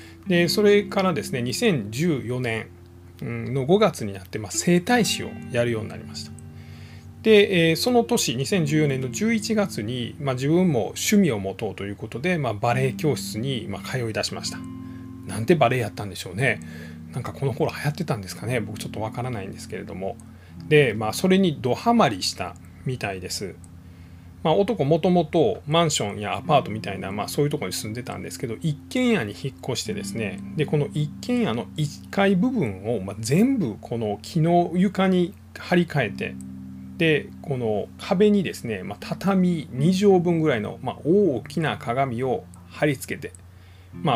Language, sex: Japanese, male